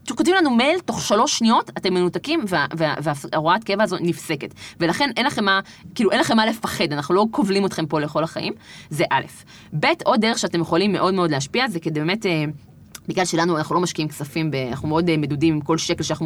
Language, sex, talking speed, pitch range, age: Hebrew, female, 210 wpm, 155-185 Hz, 20-39